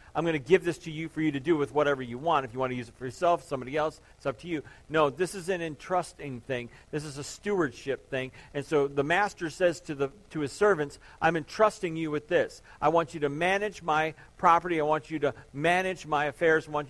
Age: 50-69